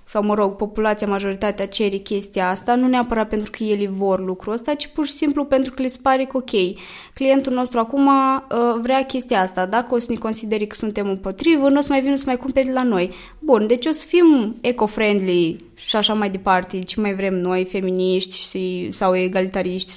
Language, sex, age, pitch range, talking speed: Romanian, female, 20-39, 200-255 Hz, 210 wpm